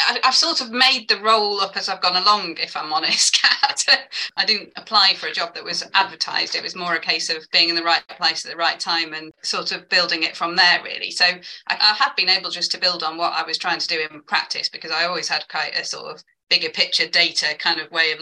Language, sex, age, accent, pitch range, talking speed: English, female, 30-49, British, 160-195 Hz, 260 wpm